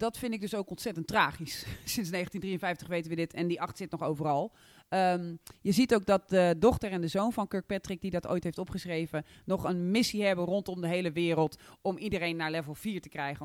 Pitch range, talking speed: 165-215 Hz, 225 wpm